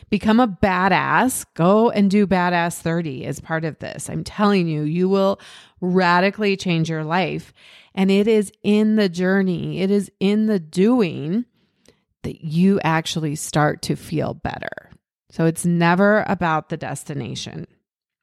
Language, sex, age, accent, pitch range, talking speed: English, female, 30-49, American, 180-265 Hz, 150 wpm